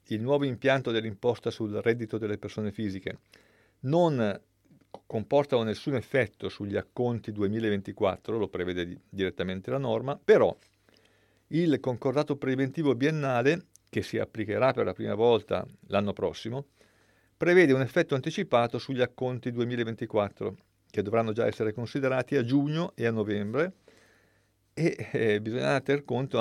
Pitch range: 110-140 Hz